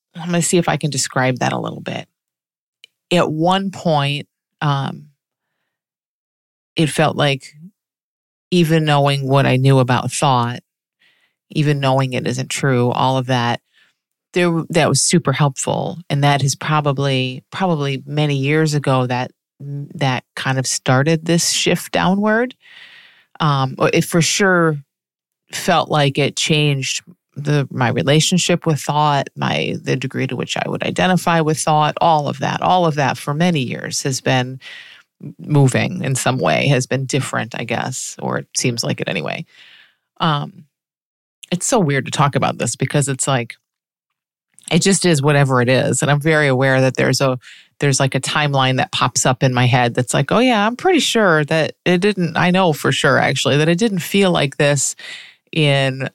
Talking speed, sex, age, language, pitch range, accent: 170 wpm, female, 30-49, English, 135-170 Hz, American